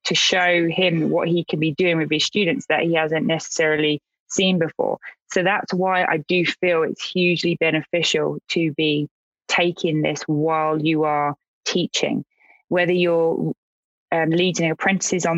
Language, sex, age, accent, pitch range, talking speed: English, female, 20-39, British, 155-180 Hz, 155 wpm